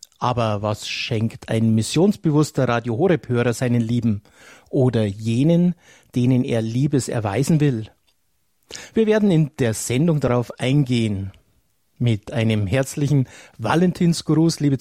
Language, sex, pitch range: German, male, 110-140 Hz